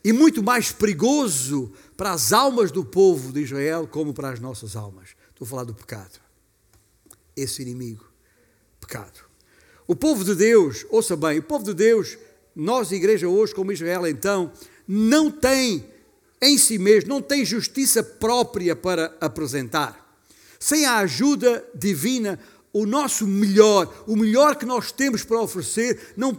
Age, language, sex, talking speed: 60-79, Portuguese, male, 150 wpm